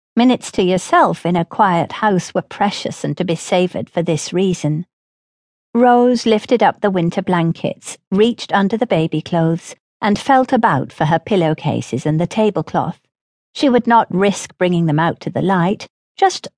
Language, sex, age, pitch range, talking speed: English, female, 50-69, 170-225 Hz, 170 wpm